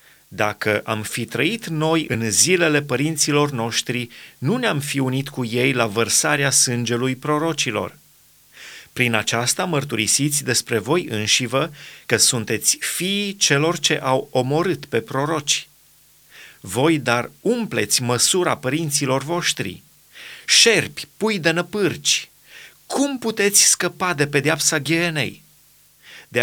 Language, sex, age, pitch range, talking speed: Romanian, male, 30-49, 120-160 Hz, 115 wpm